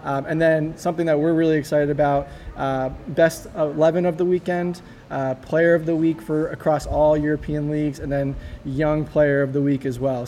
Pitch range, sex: 140-165 Hz, male